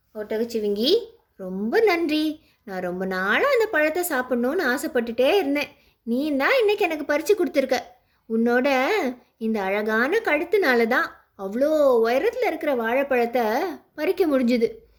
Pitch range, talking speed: 230-380 Hz, 105 wpm